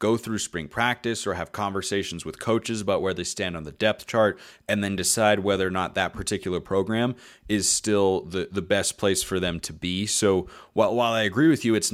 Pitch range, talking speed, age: 90-105 Hz, 220 wpm, 30-49